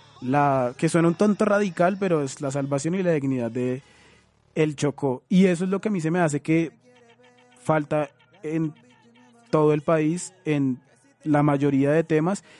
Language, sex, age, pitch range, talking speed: Spanish, male, 20-39, 135-155 Hz, 175 wpm